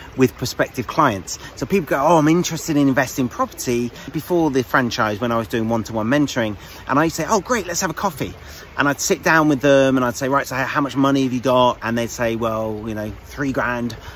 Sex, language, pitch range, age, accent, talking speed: male, English, 105-135 Hz, 30-49, British, 245 wpm